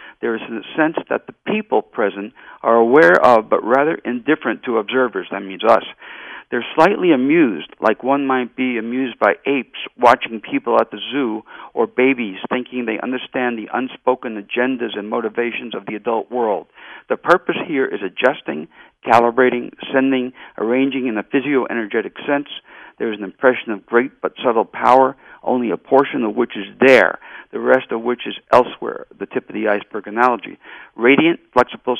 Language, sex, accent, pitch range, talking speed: English, male, American, 115-130 Hz, 170 wpm